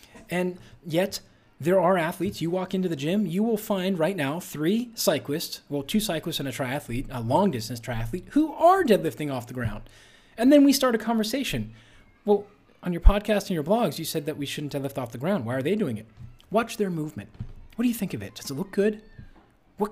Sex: male